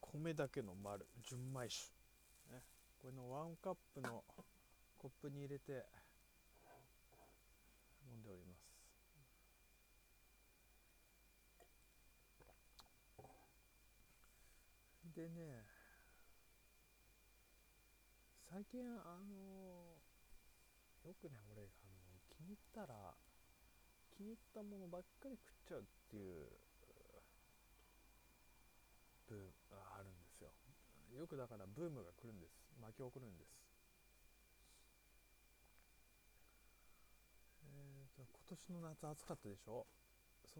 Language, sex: Japanese, male